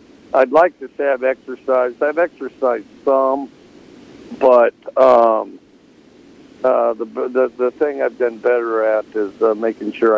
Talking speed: 135 wpm